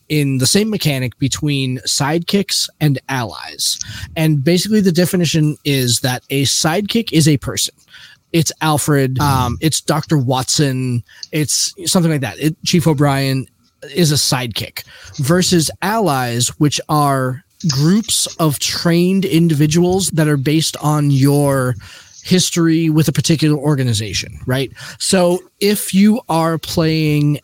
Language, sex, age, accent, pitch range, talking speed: English, male, 20-39, American, 130-165 Hz, 125 wpm